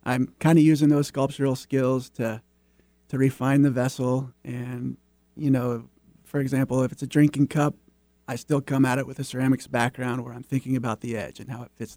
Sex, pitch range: male, 115-140 Hz